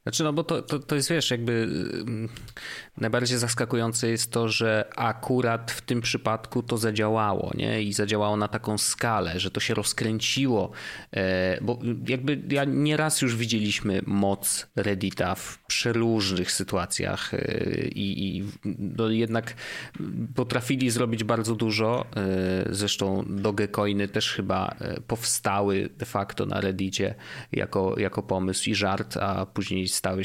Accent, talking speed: native, 130 wpm